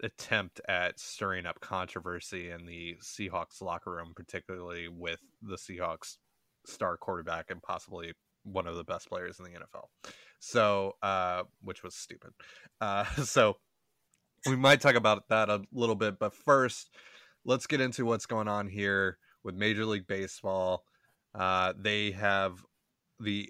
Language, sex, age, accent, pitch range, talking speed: English, male, 20-39, American, 95-110 Hz, 150 wpm